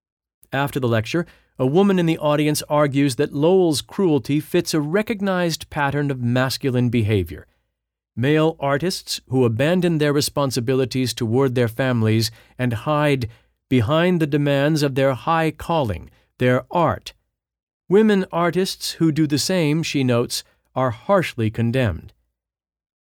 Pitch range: 115-155 Hz